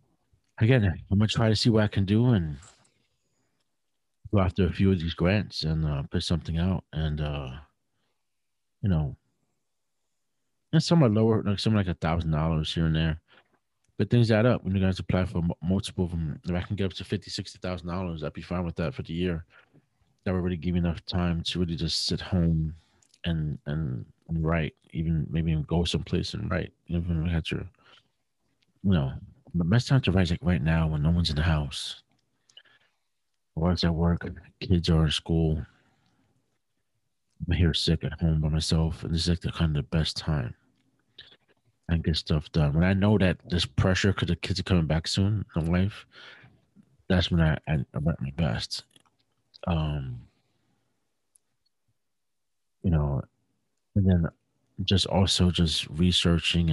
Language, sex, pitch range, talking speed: English, male, 80-100 Hz, 185 wpm